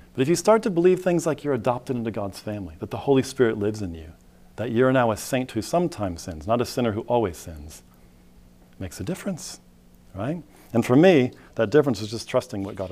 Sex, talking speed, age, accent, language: male, 225 wpm, 40-59, American, English